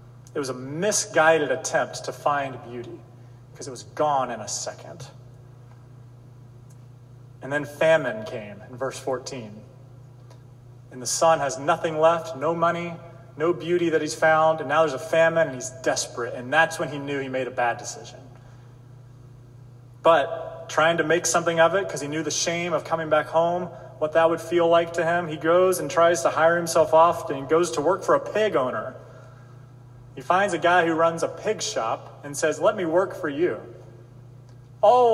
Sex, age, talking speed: male, 30-49, 190 wpm